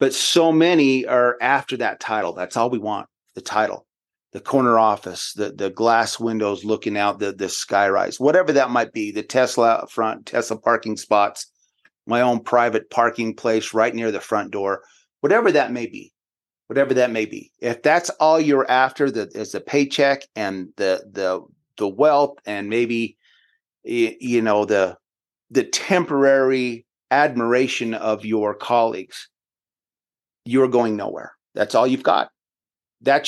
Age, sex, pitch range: 30-49, male, 110-140 Hz